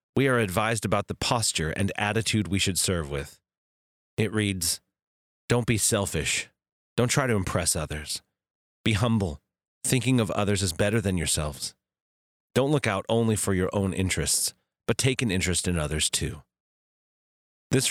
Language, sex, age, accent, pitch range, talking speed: English, male, 30-49, American, 85-115 Hz, 160 wpm